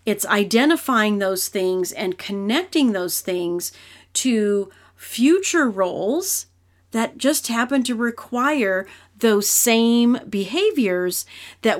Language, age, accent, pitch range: English, 40-59, American, 190-245 Hz